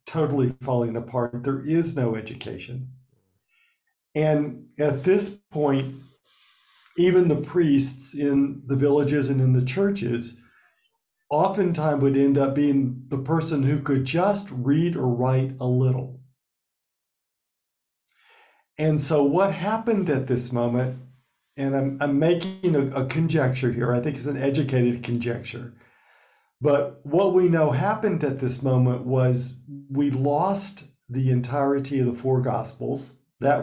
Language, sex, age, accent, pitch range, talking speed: English, male, 50-69, American, 130-155 Hz, 135 wpm